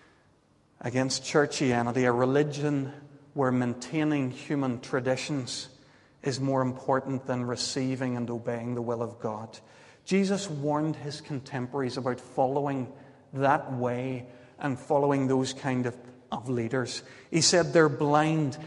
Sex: male